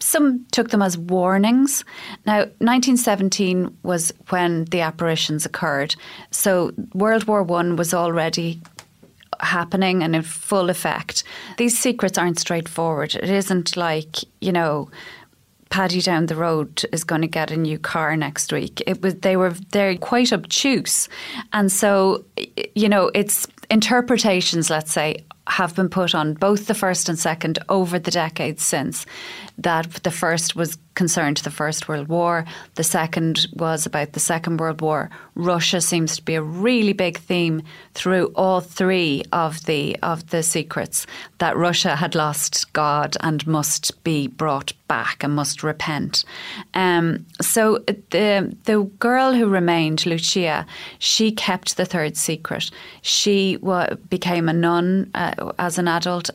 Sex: female